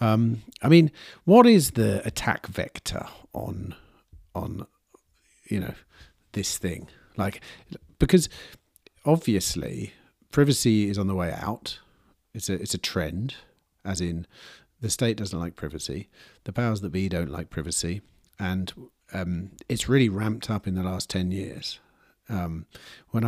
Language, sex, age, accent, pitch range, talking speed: English, male, 50-69, British, 95-120 Hz, 140 wpm